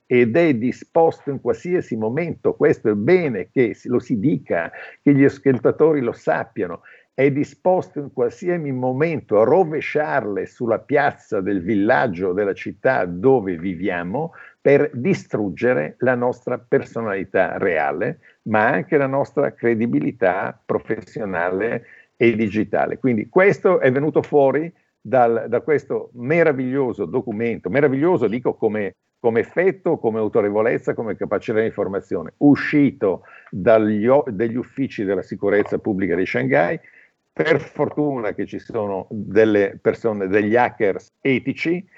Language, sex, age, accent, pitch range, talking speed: Italian, male, 50-69, native, 105-145 Hz, 120 wpm